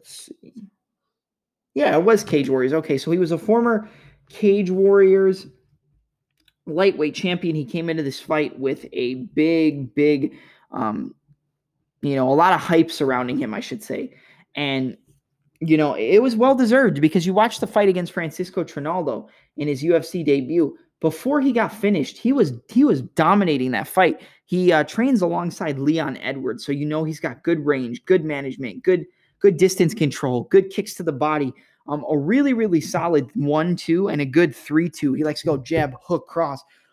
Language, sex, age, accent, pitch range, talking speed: English, male, 20-39, American, 150-190 Hz, 180 wpm